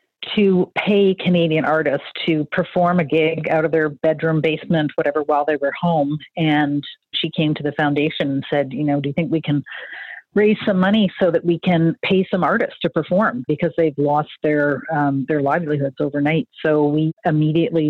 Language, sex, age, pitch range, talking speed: English, female, 40-59, 145-160 Hz, 190 wpm